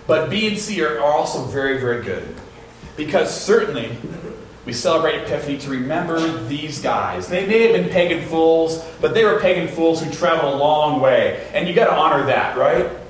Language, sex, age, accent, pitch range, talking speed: English, male, 40-59, American, 115-170 Hz, 190 wpm